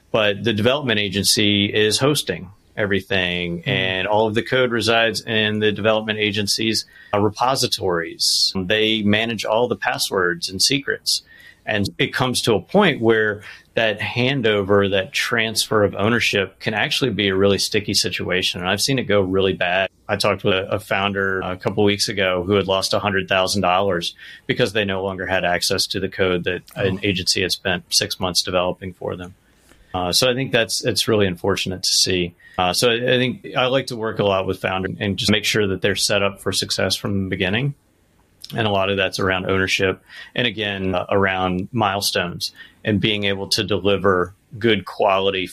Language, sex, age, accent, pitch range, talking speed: English, male, 30-49, American, 95-110 Hz, 185 wpm